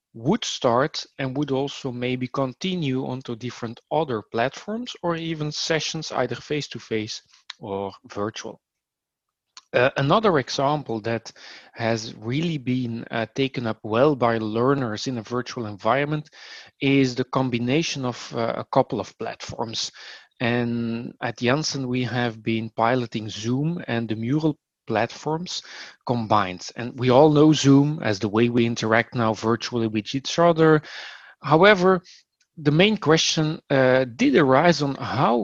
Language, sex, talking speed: English, male, 135 wpm